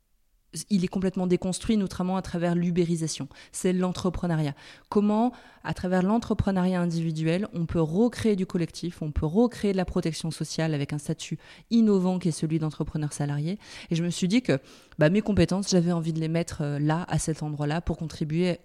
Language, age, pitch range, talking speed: French, 20-39, 155-185 Hz, 180 wpm